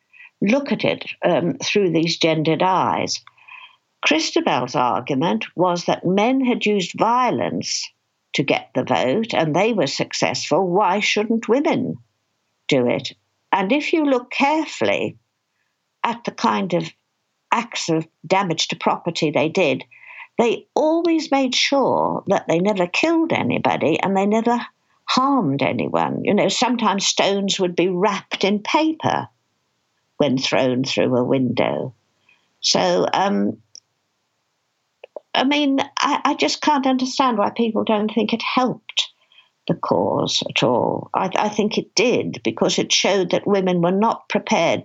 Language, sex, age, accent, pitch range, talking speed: English, female, 60-79, British, 175-275 Hz, 140 wpm